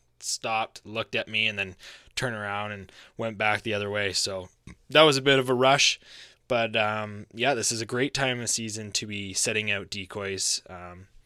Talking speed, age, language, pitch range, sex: 205 wpm, 20-39, English, 100-120 Hz, male